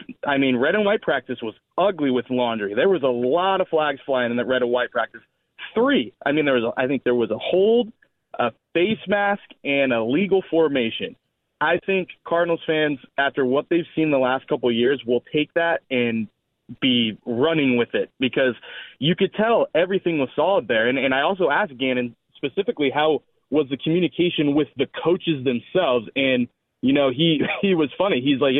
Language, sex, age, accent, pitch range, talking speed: English, male, 20-39, American, 125-170 Hz, 200 wpm